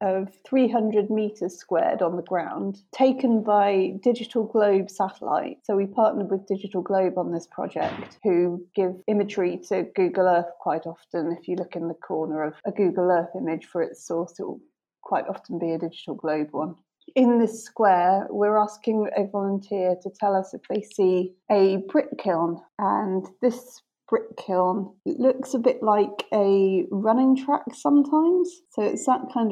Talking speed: 175 wpm